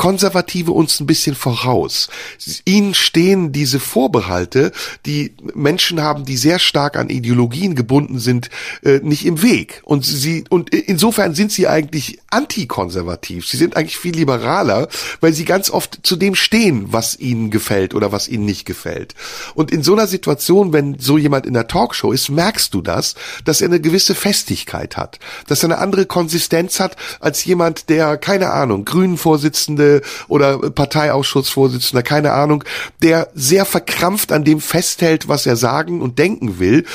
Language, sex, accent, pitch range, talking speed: German, male, German, 130-170 Hz, 160 wpm